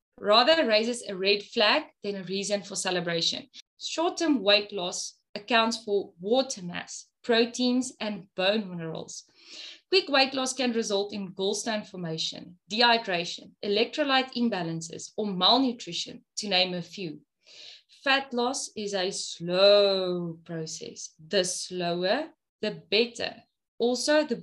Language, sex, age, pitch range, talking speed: English, female, 20-39, 195-265 Hz, 125 wpm